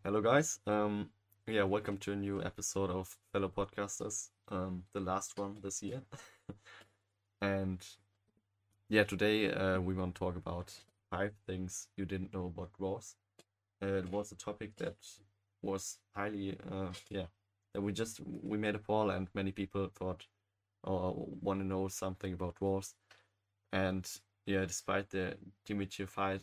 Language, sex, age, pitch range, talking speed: German, male, 20-39, 95-100 Hz, 155 wpm